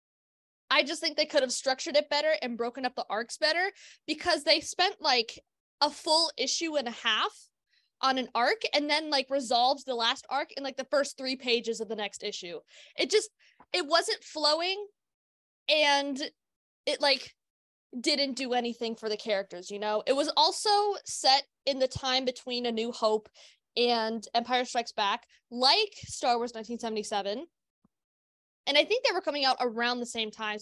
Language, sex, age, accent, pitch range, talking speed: English, female, 20-39, American, 225-290 Hz, 180 wpm